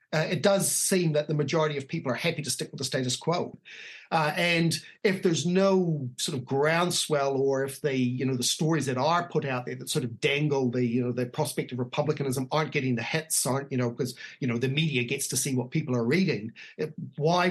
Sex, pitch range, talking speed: male, 135-170 Hz, 235 wpm